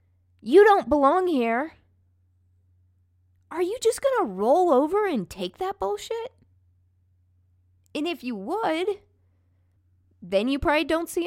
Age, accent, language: 20-39, American, English